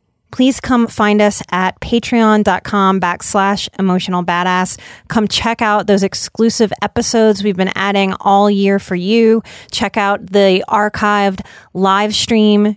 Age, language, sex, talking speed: 30-49, English, female, 130 wpm